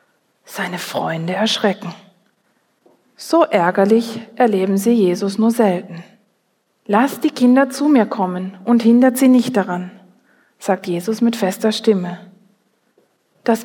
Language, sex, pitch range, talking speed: German, female, 195-245 Hz, 120 wpm